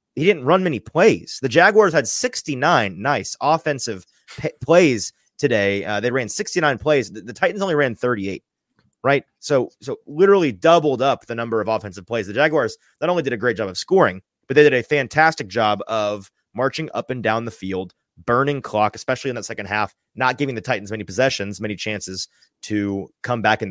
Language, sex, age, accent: English, male, 30-49, American